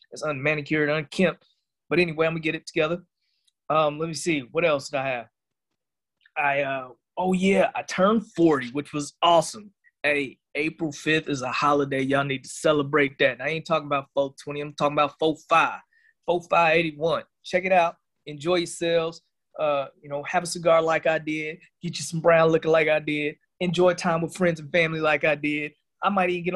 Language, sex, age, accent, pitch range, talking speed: English, male, 20-39, American, 140-165 Hz, 195 wpm